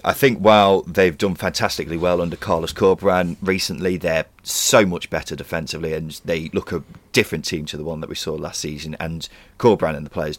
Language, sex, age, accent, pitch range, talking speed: English, male, 30-49, British, 75-90 Hz, 200 wpm